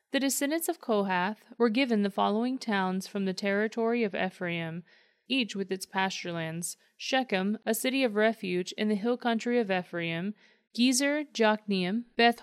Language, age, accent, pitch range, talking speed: English, 30-49, American, 190-240 Hz, 145 wpm